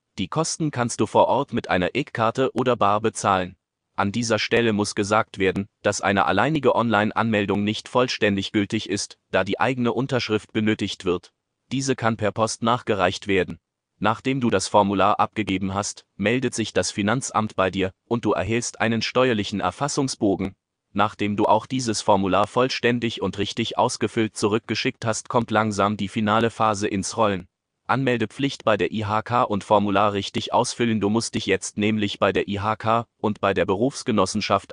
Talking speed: 160 wpm